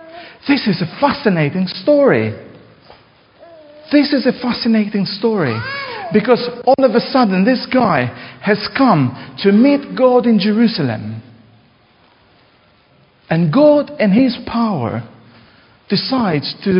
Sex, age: male, 50-69